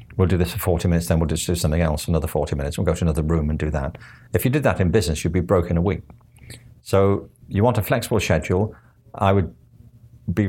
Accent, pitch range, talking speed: British, 85-115 Hz, 255 wpm